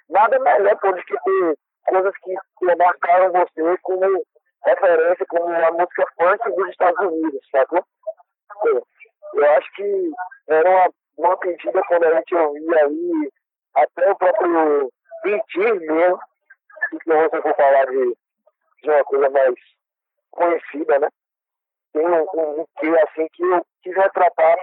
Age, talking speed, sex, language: 50-69, 140 wpm, male, Portuguese